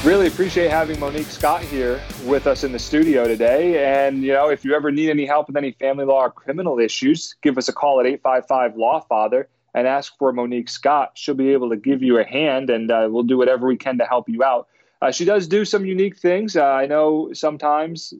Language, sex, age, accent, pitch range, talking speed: English, male, 30-49, American, 125-160 Hz, 230 wpm